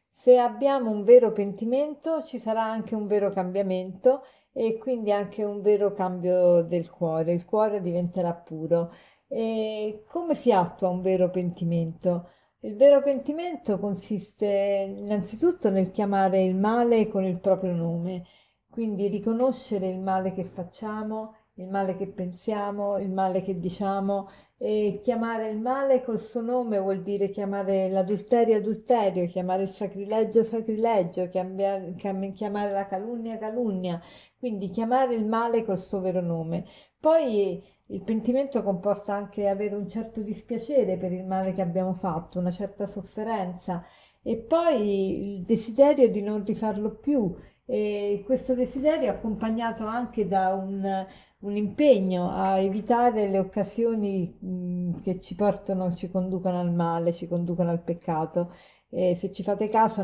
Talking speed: 140 wpm